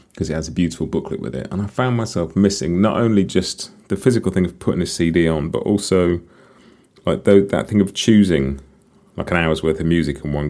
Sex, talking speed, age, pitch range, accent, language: male, 230 wpm, 30-49, 80-105 Hz, British, English